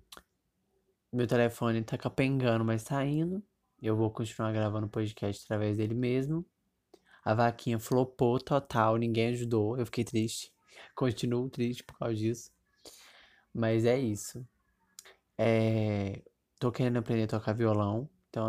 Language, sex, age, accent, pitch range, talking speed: Portuguese, male, 20-39, Brazilian, 110-125 Hz, 130 wpm